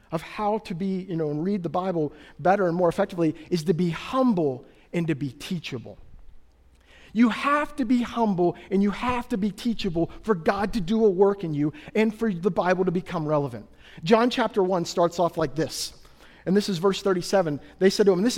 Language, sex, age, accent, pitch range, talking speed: English, male, 40-59, American, 170-245 Hz, 210 wpm